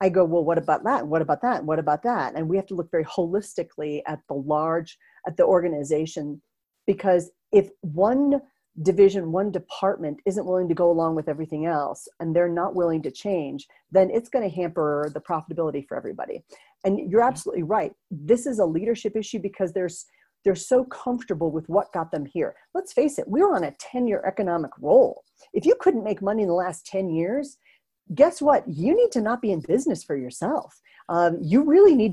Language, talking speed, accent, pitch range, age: English, 200 wpm, American, 160-225 Hz, 40-59